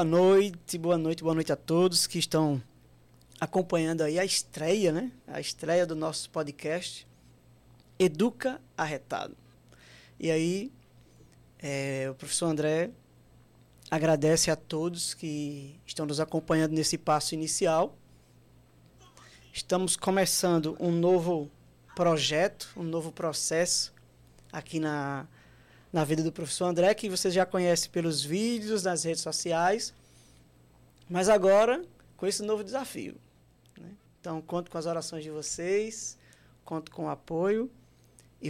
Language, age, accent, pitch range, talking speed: Portuguese, 20-39, Brazilian, 150-185 Hz, 125 wpm